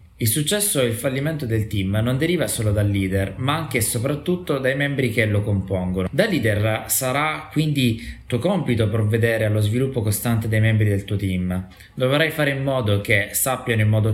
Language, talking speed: Italian, 185 wpm